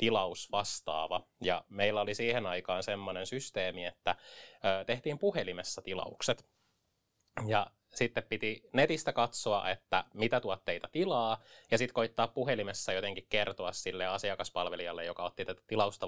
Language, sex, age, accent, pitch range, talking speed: Finnish, male, 20-39, native, 105-175 Hz, 125 wpm